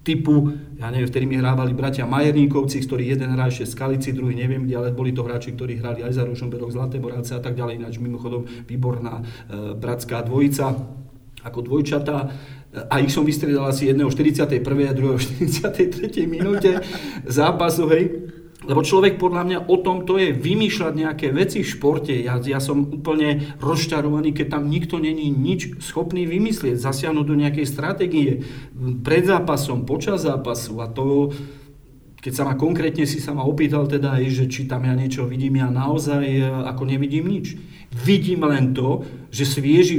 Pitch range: 130-155 Hz